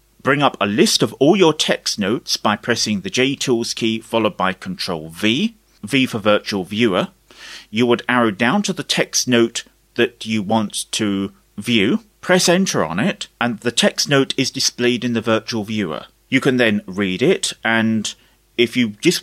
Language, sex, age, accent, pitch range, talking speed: English, male, 40-59, British, 105-135 Hz, 185 wpm